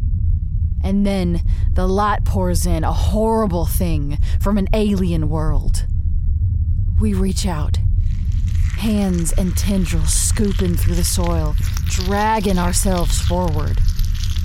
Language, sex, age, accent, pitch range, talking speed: English, female, 20-39, American, 85-95 Hz, 110 wpm